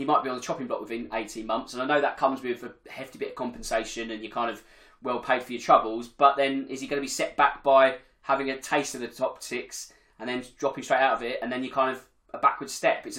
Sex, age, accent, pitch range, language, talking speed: male, 20-39, British, 125-175 Hz, English, 285 wpm